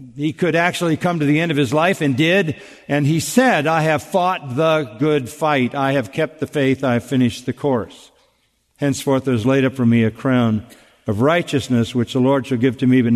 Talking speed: 230 wpm